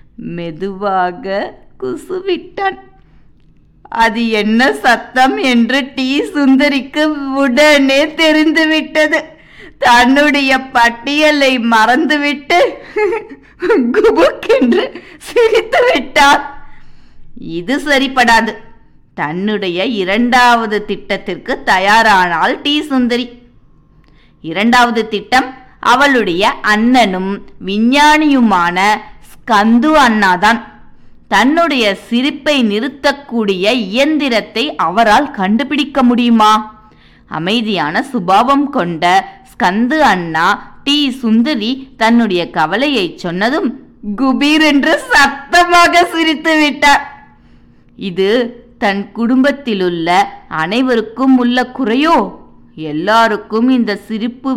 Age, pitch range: 20-39, 215-285 Hz